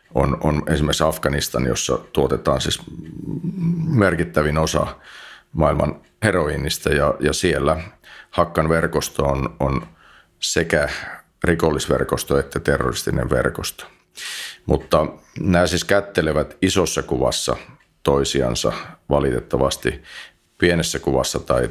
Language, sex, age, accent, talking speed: Finnish, male, 40-59, native, 95 wpm